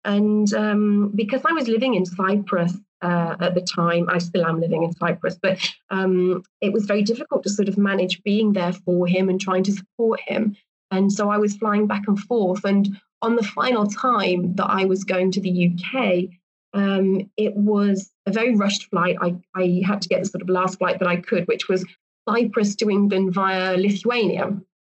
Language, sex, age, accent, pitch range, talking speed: English, female, 30-49, British, 185-215 Hz, 205 wpm